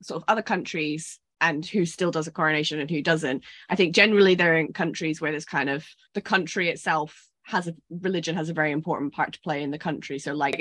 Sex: female